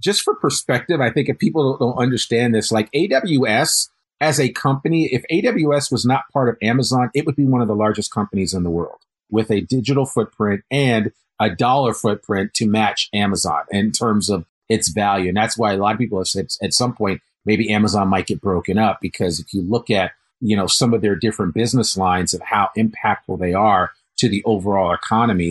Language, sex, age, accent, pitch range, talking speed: English, male, 40-59, American, 100-125 Hz, 210 wpm